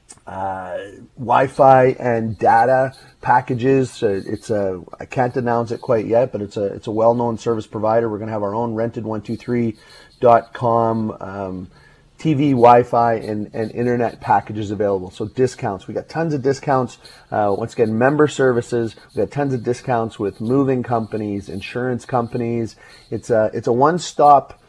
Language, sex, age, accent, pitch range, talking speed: English, male, 30-49, American, 105-130 Hz, 165 wpm